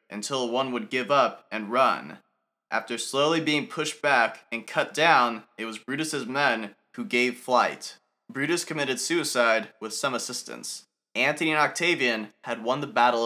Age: 20-39